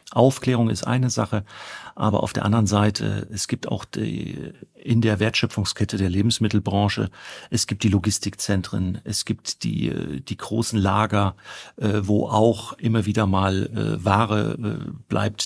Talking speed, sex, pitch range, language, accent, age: 135 wpm, male, 100-115 Hz, German, German, 40-59